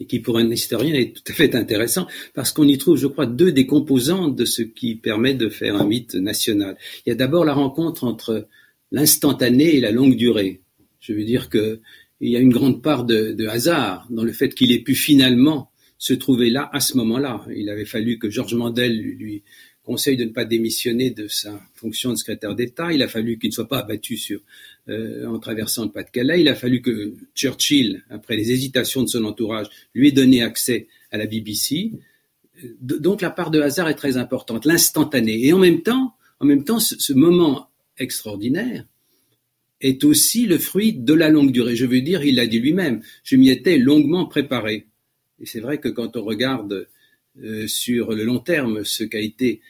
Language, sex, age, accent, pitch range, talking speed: French, male, 50-69, French, 115-150 Hz, 205 wpm